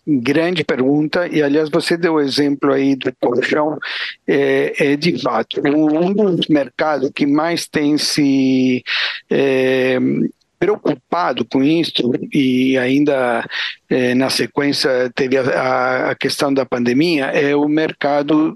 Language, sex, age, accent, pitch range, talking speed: Portuguese, male, 60-79, Brazilian, 135-165 Hz, 135 wpm